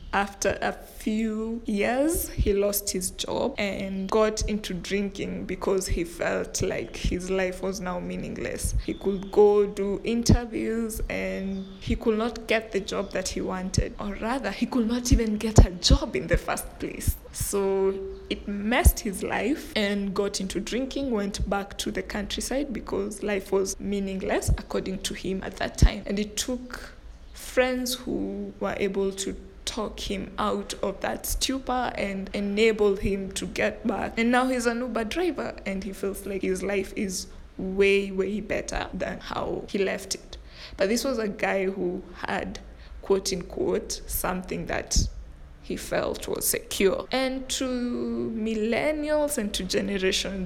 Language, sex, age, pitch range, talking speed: English, female, 20-39, 195-230 Hz, 160 wpm